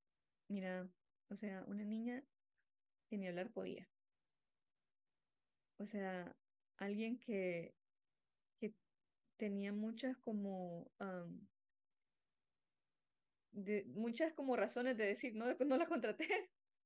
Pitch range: 205-245 Hz